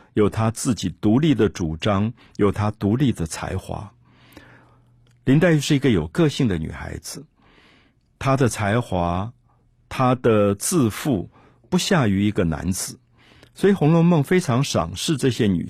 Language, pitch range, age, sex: Chinese, 95-135 Hz, 50-69, male